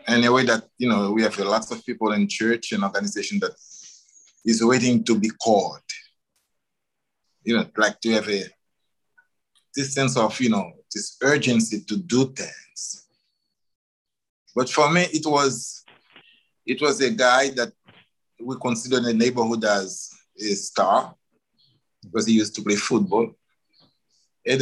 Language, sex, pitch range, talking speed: English, male, 115-150 Hz, 145 wpm